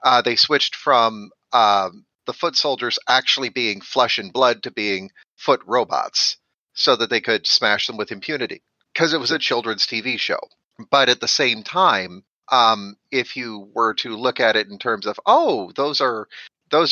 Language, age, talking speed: English, 40-59, 175 wpm